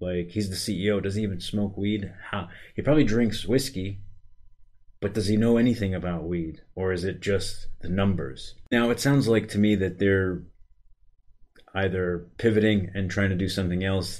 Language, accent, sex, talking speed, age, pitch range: English, American, male, 180 wpm, 30-49, 90-100 Hz